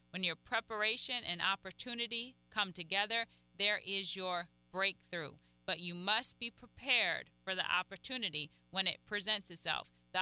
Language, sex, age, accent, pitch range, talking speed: English, female, 30-49, American, 175-215 Hz, 140 wpm